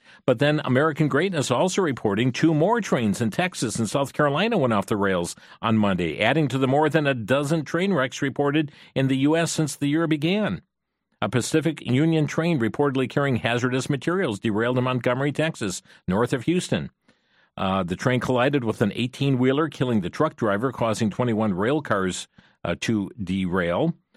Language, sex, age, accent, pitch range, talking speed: English, male, 50-69, American, 105-145 Hz, 175 wpm